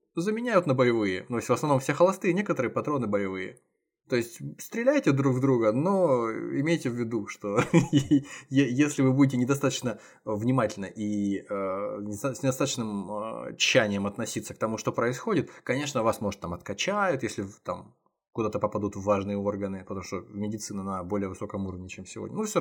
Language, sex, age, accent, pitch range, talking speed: Russian, male, 20-39, native, 100-135 Hz, 165 wpm